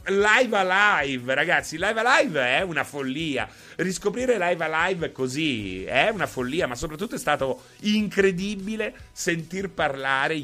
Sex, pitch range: male, 115-160 Hz